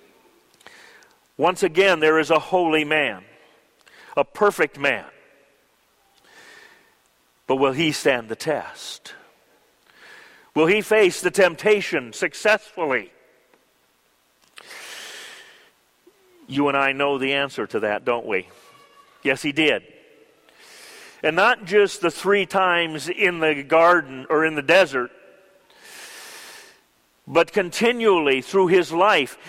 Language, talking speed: English, 110 wpm